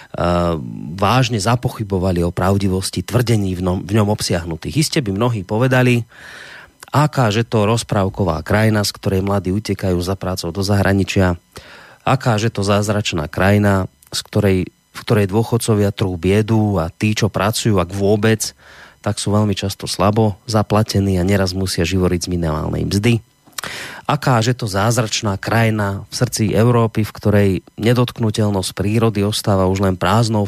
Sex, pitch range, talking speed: male, 95-110 Hz, 145 wpm